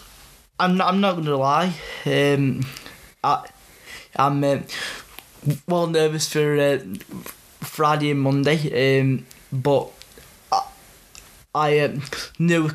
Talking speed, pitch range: 120 wpm, 125-145 Hz